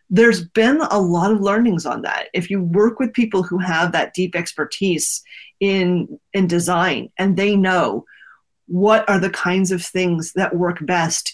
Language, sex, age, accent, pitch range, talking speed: English, female, 30-49, American, 175-220 Hz, 175 wpm